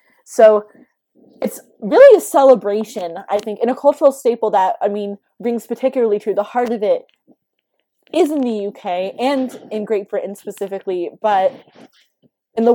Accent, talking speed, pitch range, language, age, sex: American, 160 wpm, 200-270 Hz, English, 20-39, female